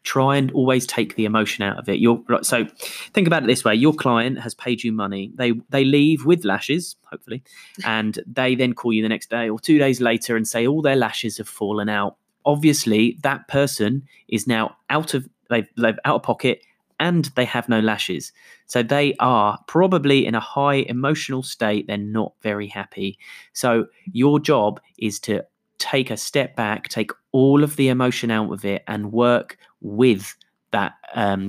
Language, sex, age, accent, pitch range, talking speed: English, male, 30-49, British, 110-135 Hz, 190 wpm